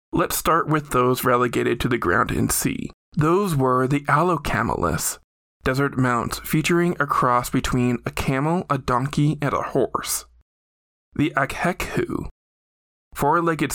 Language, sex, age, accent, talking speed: English, male, 20-39, American, 130 wpm